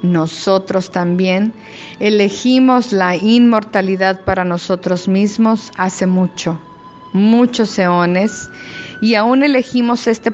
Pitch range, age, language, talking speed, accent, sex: 185-215 Hz, 40-59, Spanish, 95 wpm, Mexican, female